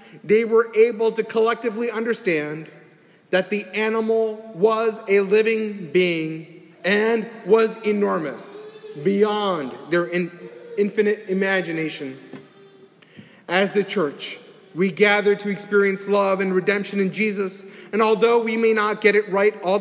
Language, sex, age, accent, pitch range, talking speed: English, male, 30-49, American, 175-215 Hz, 125 wpm